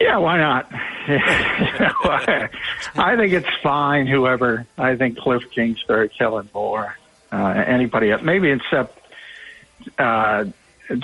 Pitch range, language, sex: 110-135 Hz, English, male